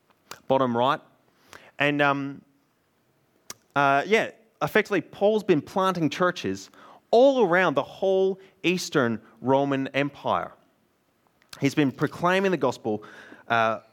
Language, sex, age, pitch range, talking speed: English, male, 20-39, 125-170 Hz, 105 wpm